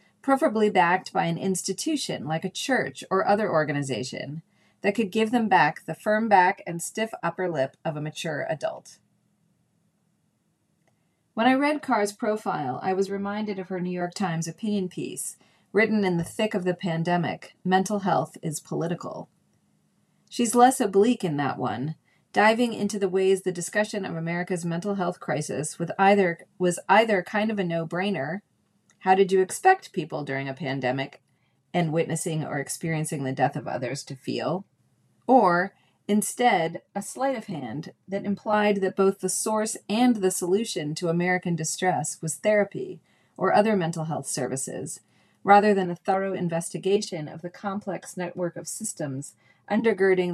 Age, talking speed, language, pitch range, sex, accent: 30-49, 155 wpm, English, 165-205 Hz, female, American